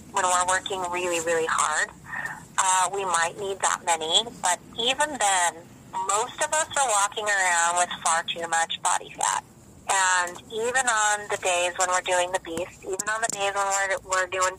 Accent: American